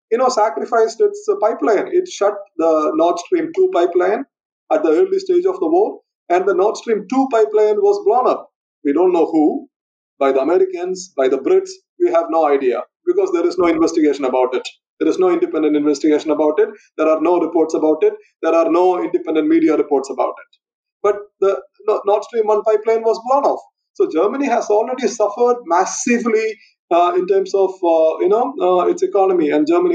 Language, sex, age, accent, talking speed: English, male, 30-49, Indian, 195 wpm